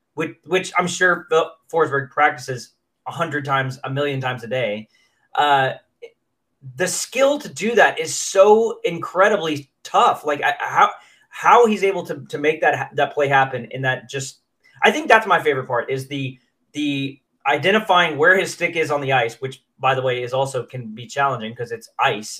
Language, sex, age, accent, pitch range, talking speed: English, male, 20-39, American, 135-185 Hz, 185 wpm